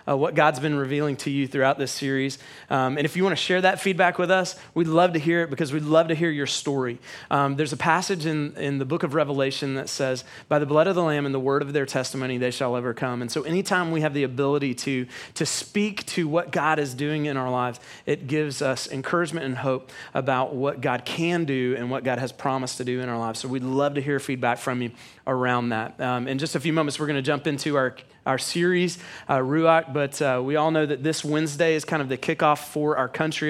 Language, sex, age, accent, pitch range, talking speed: English, male, 30-49, American, 135-160 Hz, 255 wpm